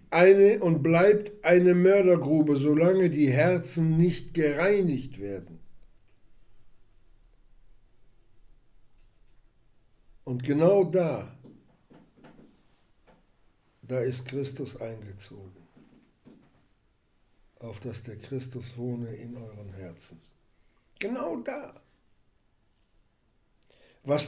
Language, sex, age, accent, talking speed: German, male, 60-79, German, 70 wpm